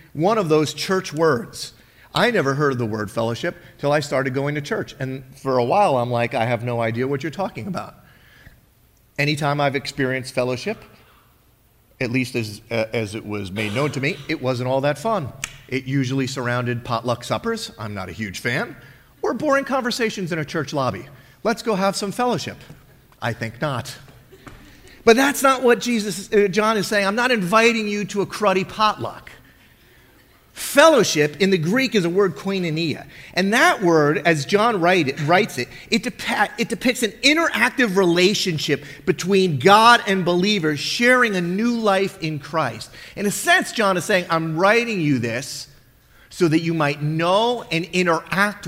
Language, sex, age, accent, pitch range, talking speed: English, male, 40-59, American, 130-195 Hz, 180 wpm